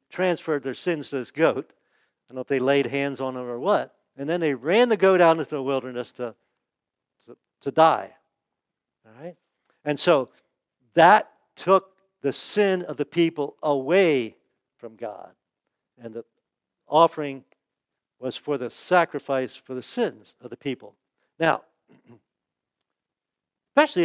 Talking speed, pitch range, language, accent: 150 wpm, 130-175 Hz, English, American